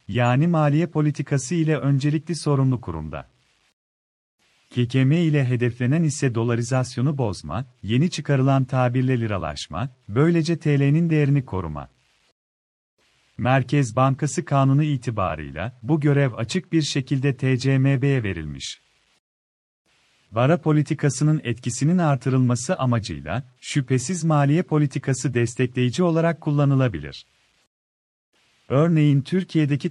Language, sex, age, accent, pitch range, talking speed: Turkish, male, 40-59, native, 120-150 Hz, 90 wpm